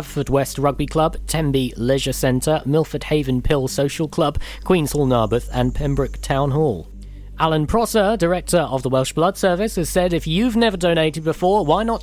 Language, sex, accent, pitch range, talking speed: English, male, British, 130-175 Hz, 175 wpm